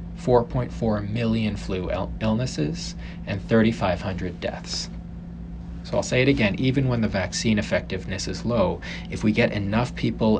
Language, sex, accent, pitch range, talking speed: English, male, American, 90-115 Hz, 140 wpm